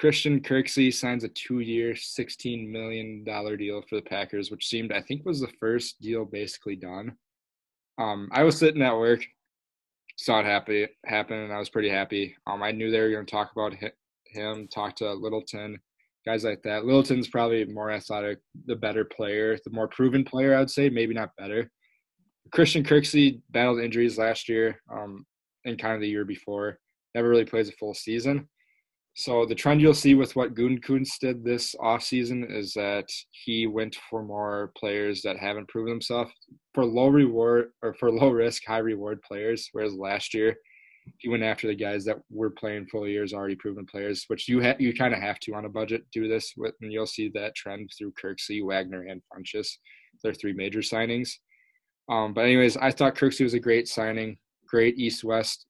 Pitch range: 105-125 Hz